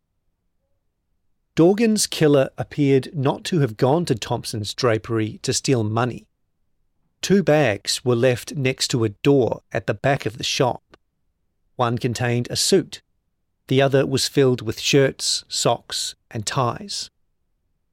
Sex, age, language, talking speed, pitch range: male, 40-59, English, 135 wpm, 105-135 Hz